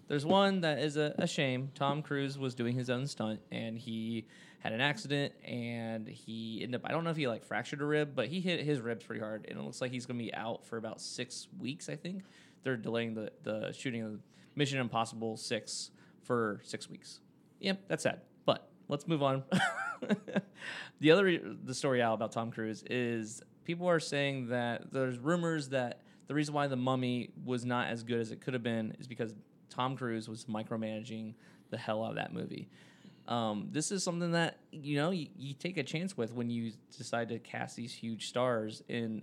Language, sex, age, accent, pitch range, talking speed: English, male, 20-39, American, 115-145 Hz, 210 wpm